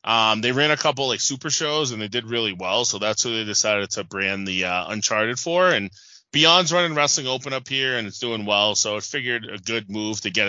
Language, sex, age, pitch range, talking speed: English, male, 20-39, 105-150 Hz, 245 wpm